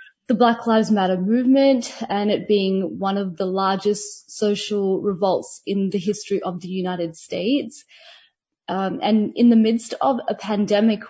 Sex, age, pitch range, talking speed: female, 20-39, 190-220 Hz, 155 wpm